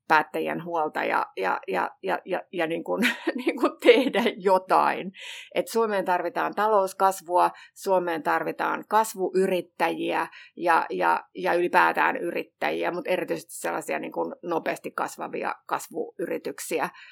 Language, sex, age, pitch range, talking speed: Finnish, female, 30-49, 165-210 Hz, 120 wpm